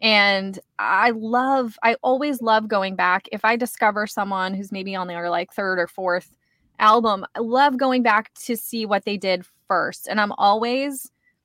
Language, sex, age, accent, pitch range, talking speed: English, female, 20-39, American, 190-250 Hz, 180 wpm